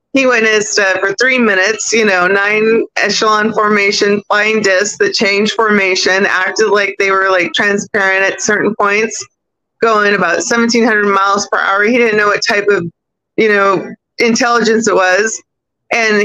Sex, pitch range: female, 195-225 Hz